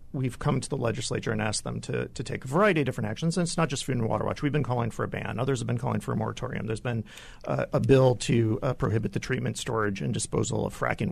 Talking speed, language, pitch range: 280 wpm, English, 120-155 Hz